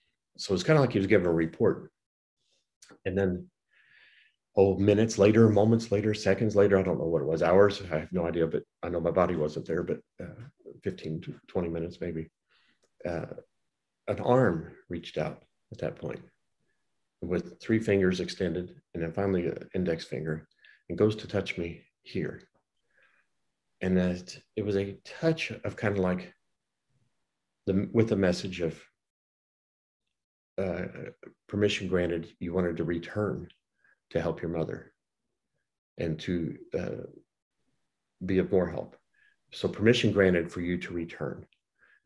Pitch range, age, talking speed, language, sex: 85-105 Hz, 50-69, 155 wpm, English, male